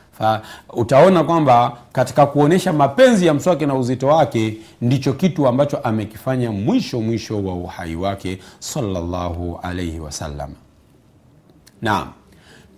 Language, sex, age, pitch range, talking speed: Swahili, male, 50-69, 95-150 Hz, 110 wpm